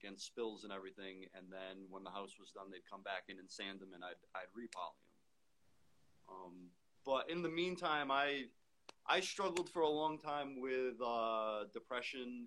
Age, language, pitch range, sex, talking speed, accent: 30-49, English, 95-120 Hz, male, 185 wpm, American